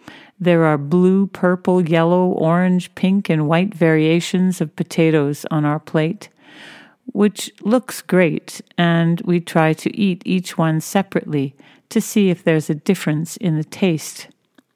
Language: English